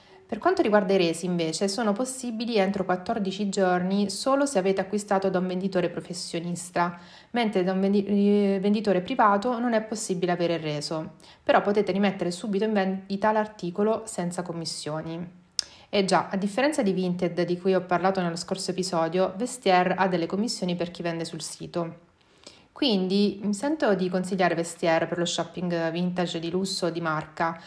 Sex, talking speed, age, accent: female, 165 wpm, 30-49, native